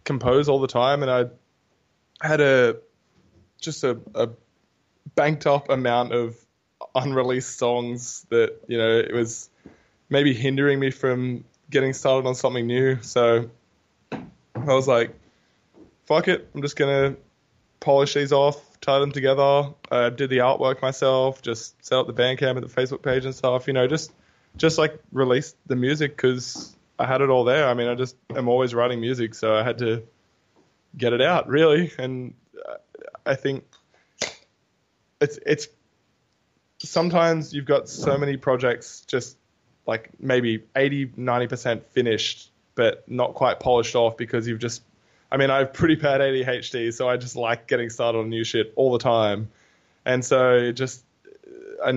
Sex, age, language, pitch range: male, 20-39, English, 120-140 Hz